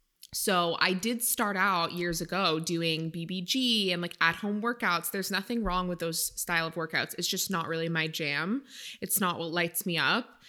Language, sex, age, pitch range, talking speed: English, female, 20-39, 165-200 Hz, 190 wpm